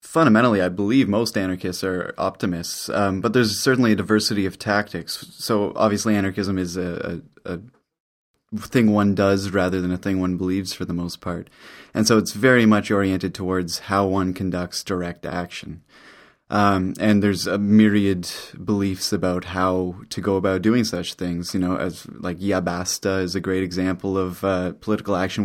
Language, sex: English, male